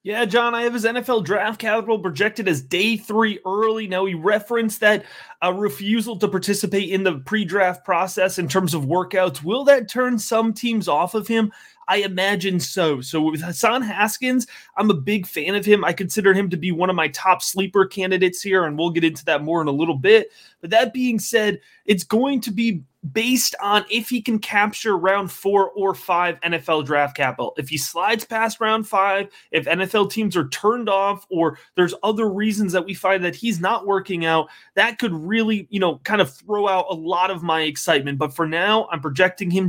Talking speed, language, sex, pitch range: 210 wpm, English, male, 180-220 Hz